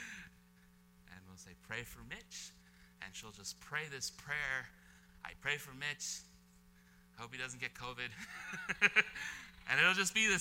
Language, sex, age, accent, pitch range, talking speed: English, male, 30-49, American, 140-210 Hz, 140 wpm